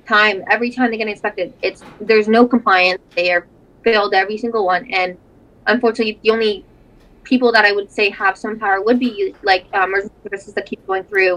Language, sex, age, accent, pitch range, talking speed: English, female, 20-39, American, 190-225 Hz, 200 wpm